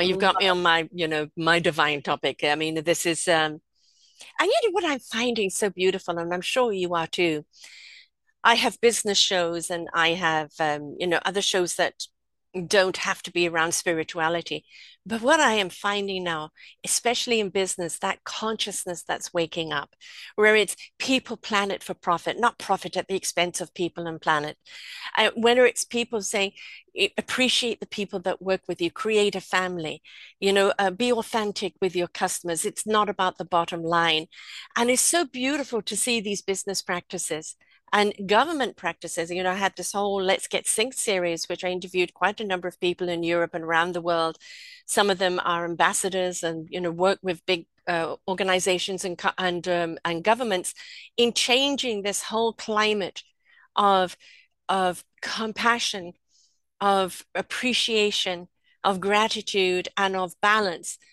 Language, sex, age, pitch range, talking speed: English, female, 50-69, 175-215 Hz, 170 wpm